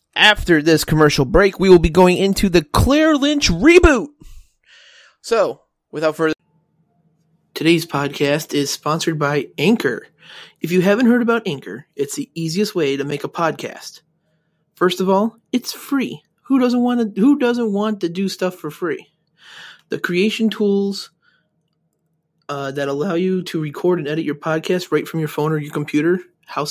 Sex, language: male, English